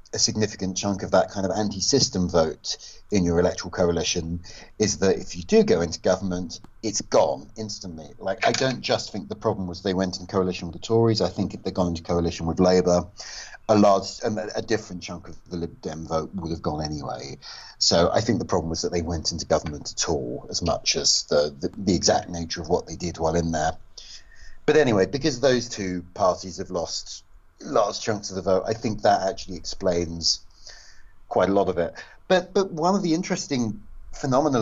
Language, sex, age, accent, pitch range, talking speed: English, male, 40-59, British, 90-115 Hz, 210 wpm